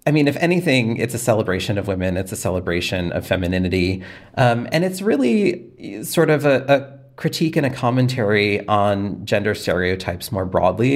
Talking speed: 170 wpm